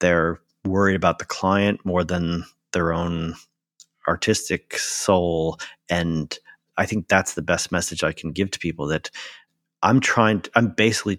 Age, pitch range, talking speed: 40-59, 85-100 Hz, 150 wpm